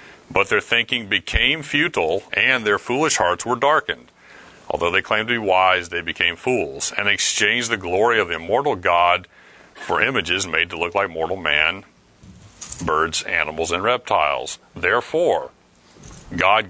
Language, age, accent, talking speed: English, 40-59, American, 150 wpm